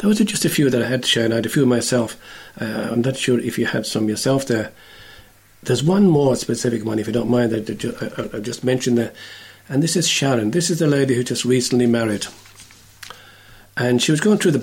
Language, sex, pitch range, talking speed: English, male, 110-140 Hz, 240 wpm